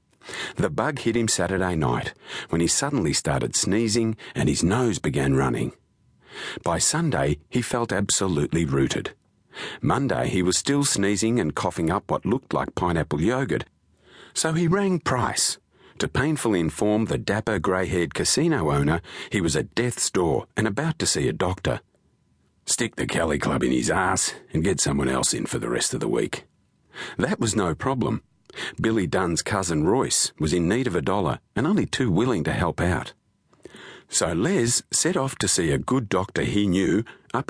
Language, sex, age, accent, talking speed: English, male, 40-59, Australian, 175 wpm